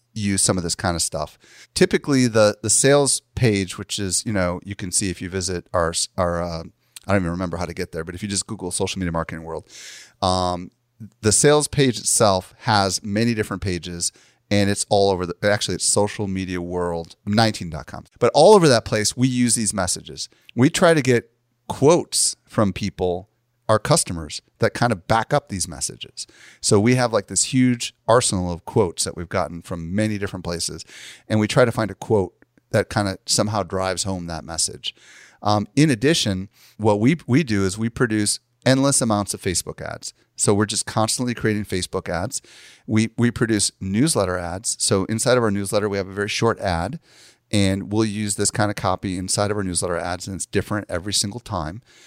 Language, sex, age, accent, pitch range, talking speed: English, male, 30-49, American, 95-115 Hz, 195 wpm